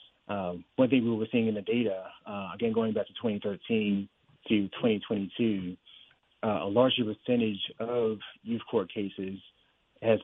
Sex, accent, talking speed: male, American, 150 wpm